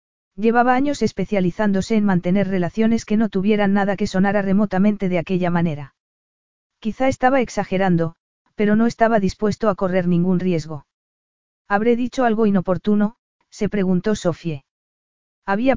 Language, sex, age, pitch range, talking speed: Spanish, female, 40-59, 180-215 Hz, 135 wpm